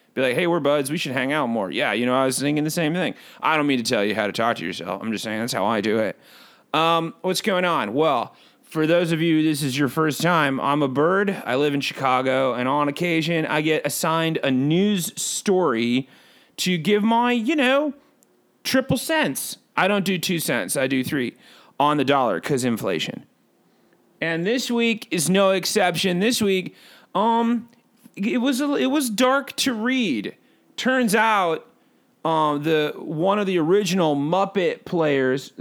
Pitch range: 145-220 Hz